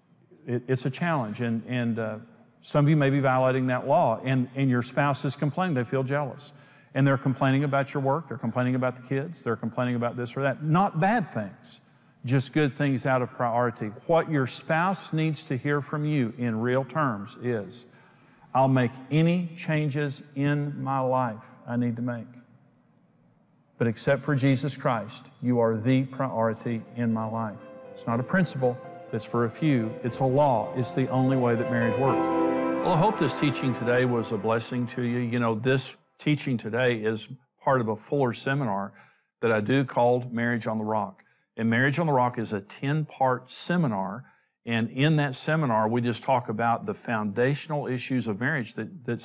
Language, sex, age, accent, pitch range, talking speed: English, male, 50-69, American, 115-140 Hz, 190 wpm